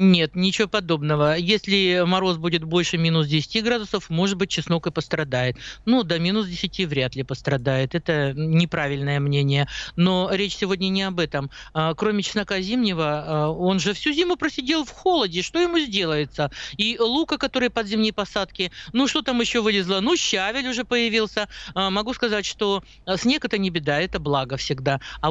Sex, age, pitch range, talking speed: male, 50-69, 170-235 Hz, 165 wpm